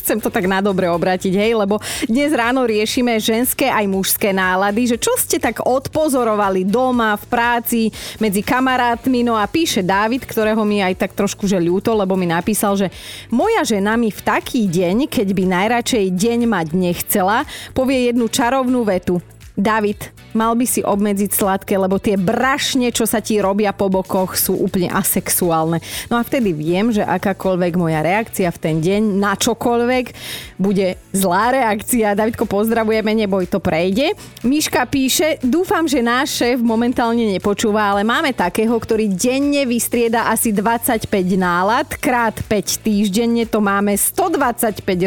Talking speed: 155 wpm